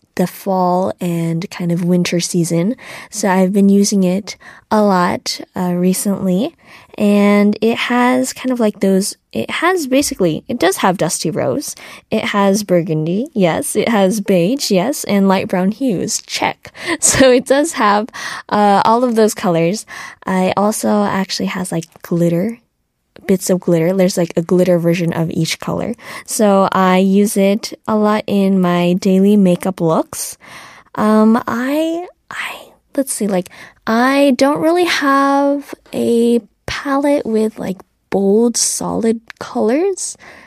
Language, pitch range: Korean, 185-235 Hz